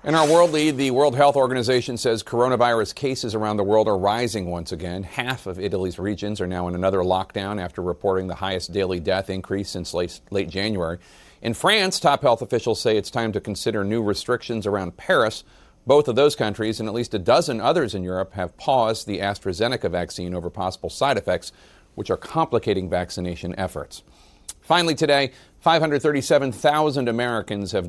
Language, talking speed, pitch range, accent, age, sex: English, 180 wpm, 95-120 Hz, American, 40-59, male